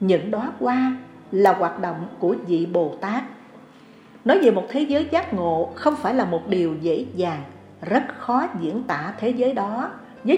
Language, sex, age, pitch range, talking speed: Vietnamese, female, 60-79, 175-255 Hz, 185 wpm